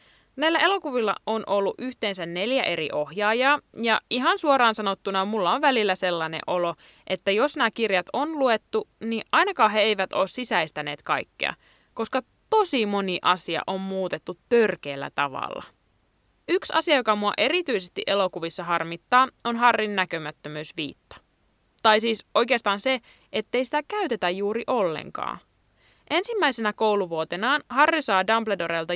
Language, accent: Finnish, native